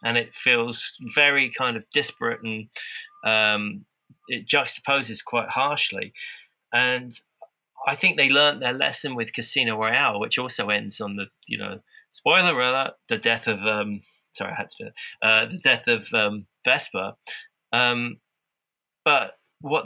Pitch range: 115-135 Hz